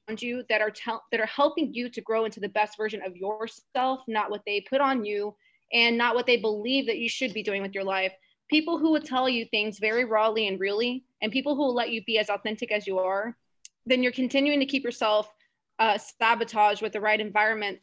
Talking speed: 230 wpm